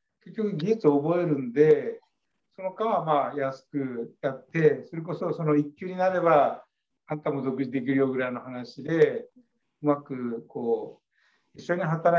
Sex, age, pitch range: male, 60-79, 140-205 Hz